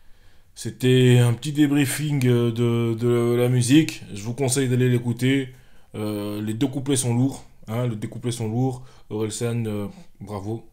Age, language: 20-39, French